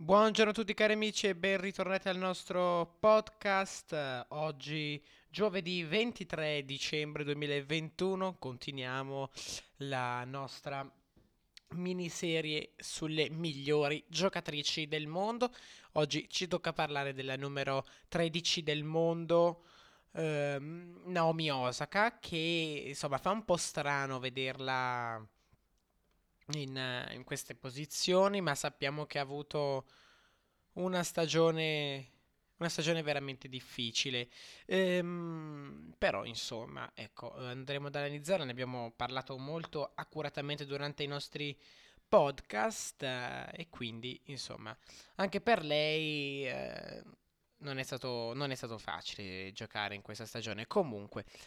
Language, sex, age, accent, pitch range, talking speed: Italian, male, 20-39, native, 130-175 Hz, 110 wpm